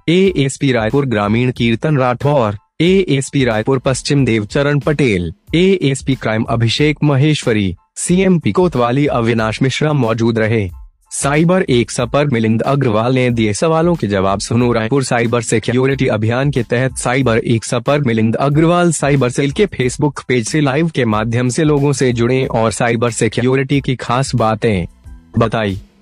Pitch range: 115-140 Hz